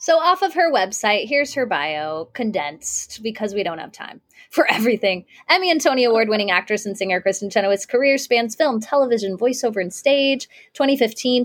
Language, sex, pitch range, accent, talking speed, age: English, female, 180-245 Hz, American, 175 wpm, 20-39